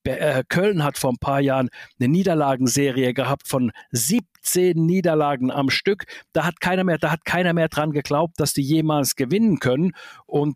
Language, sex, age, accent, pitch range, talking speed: German, male, 50-69, German, 130-155 Hz, 155 wpm